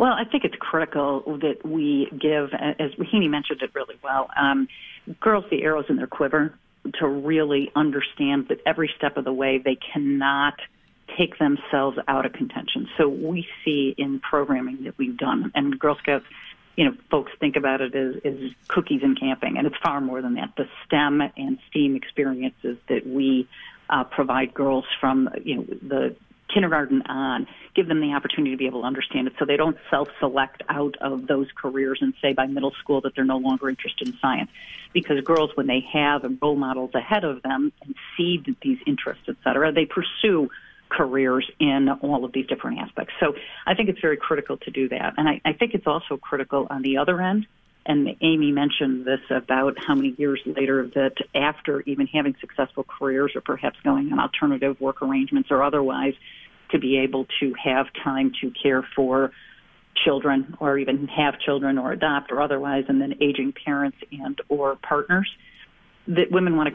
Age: 40-59